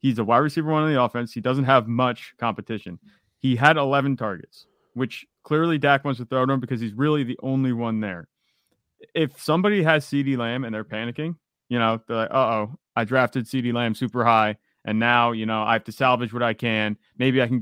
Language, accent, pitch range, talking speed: English, American, 115-140 Hz, 225 wpm